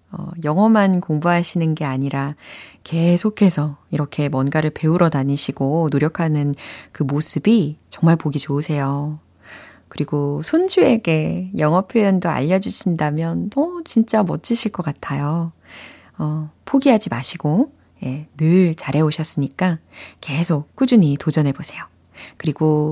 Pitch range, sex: 145-190 Hz, female